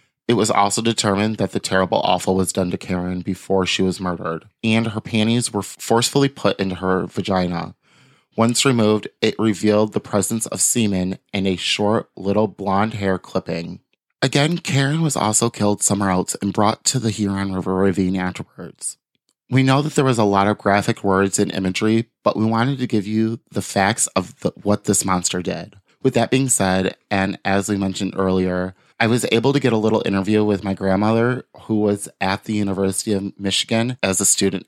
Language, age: English, 30-49